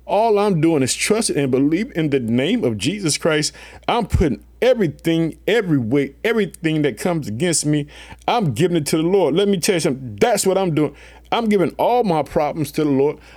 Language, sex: English, male